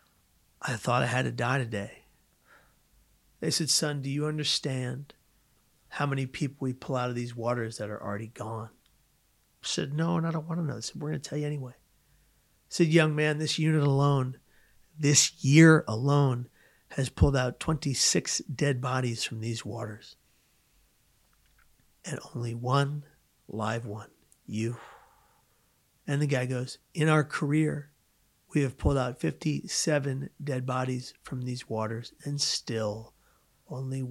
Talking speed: 155 wpm